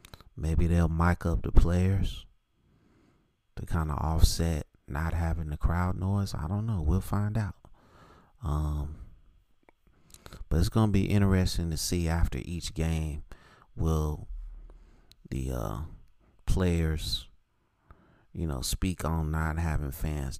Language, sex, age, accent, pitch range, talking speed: English, male, 30-49, American, 75-90 Hz, 130 wpm